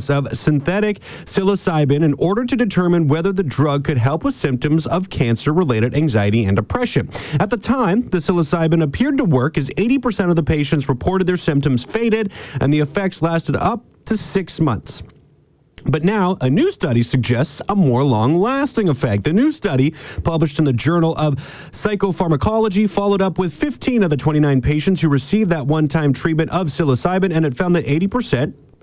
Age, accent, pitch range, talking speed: 30-49, American, 135-190 Hz, 175 wpm